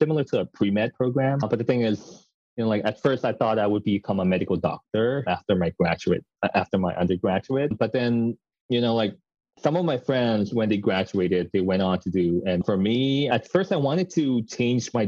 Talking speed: 220 wpm